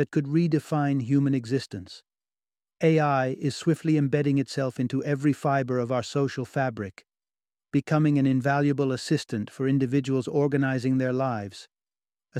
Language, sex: English, male